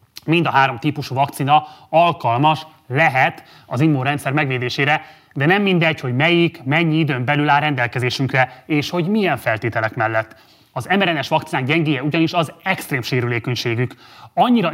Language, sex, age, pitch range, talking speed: Hungarian, male, 30-49, 130-165 Hz, 140 wpm